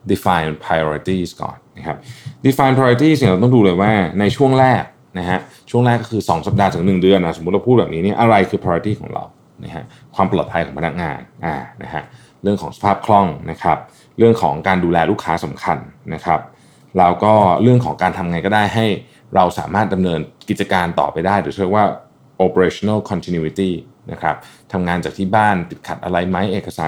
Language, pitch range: Thai, 90-115 Hz